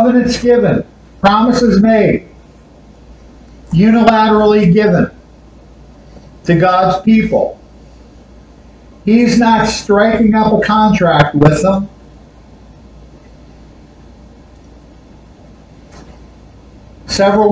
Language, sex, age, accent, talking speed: English, male, 50-69, American, 60 wpm